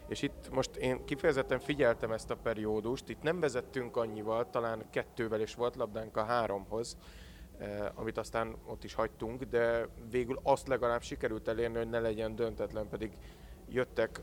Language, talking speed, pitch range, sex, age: Hungarian, 160 wpm, 110-125 Hz, male, 30-49